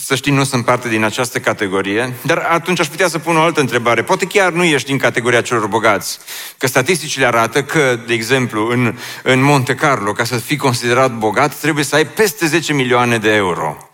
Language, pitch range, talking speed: Romanian, 110-150 Hz, 205 wpm